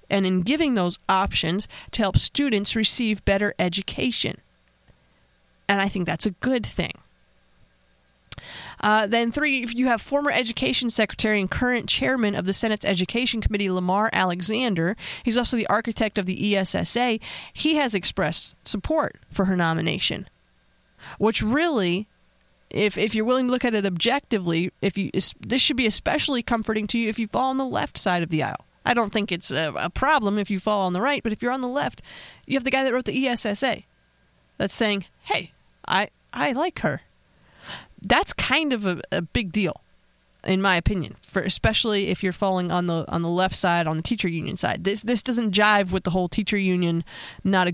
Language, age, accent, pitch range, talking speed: English, 30-49, American, 180-235 Hz, 190 wpm